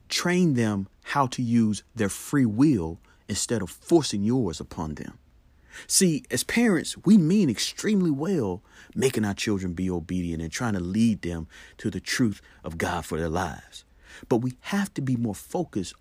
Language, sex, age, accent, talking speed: English, male, 40-59, American, 170 wpm